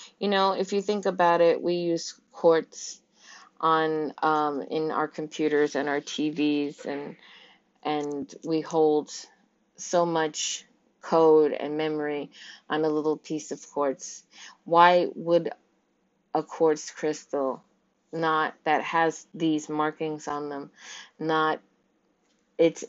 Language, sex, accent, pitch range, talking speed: English, female, American, 155-190 Hz, 125 wpm